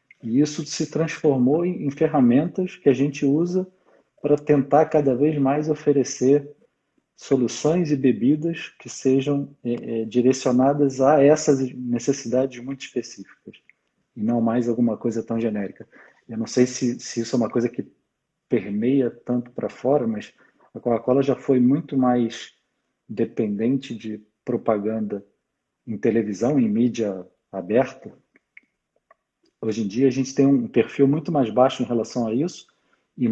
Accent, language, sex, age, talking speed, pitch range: Brazilian, Portuguese, male, 40-59, 145 wpm, 120-145 Hz